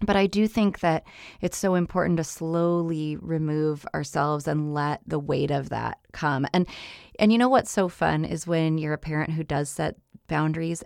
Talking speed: 195 wpm